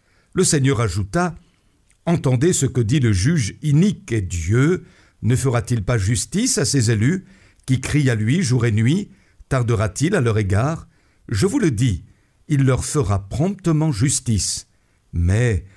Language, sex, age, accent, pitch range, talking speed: French, male, 60-79, French, 100-140 Hz, 150 wpm